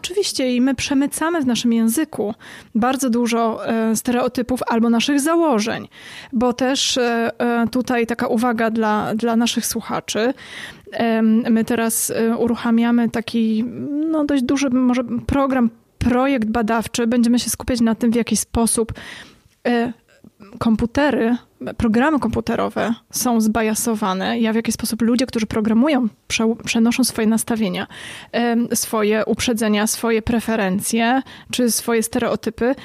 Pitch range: 225-250 Hz